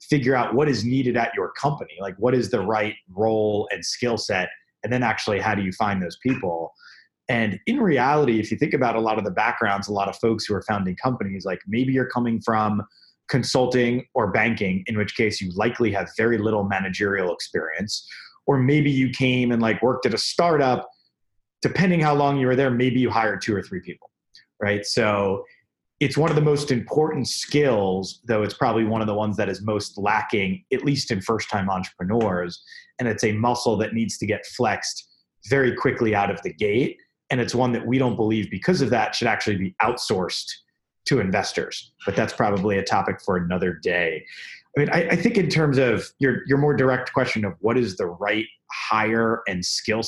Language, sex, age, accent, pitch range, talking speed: English, male, 30-49, American, 105-130 Hz, 205 wpm